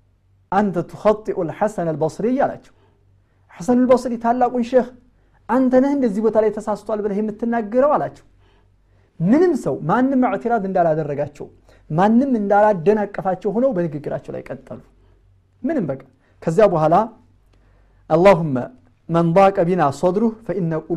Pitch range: 130-200 Hz